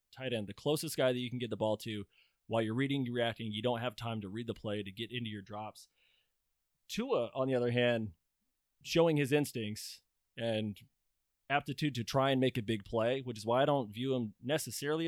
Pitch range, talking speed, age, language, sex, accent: 115-150 Hz, 220 wpm, 20-39, English, male, American